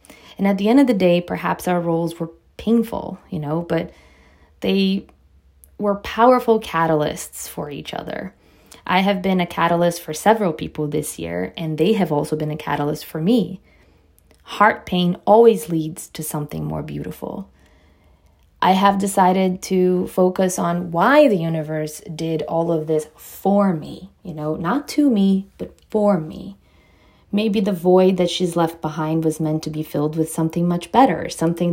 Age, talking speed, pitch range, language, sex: 20-39, 170 wpm, 155-185 Hz, English, female